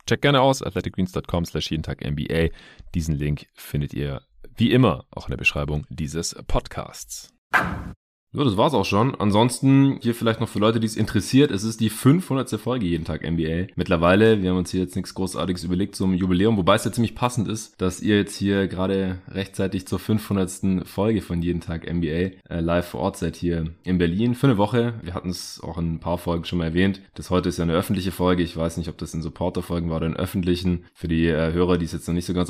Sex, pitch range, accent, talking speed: male, 85-105 Hz, German, 225 wpm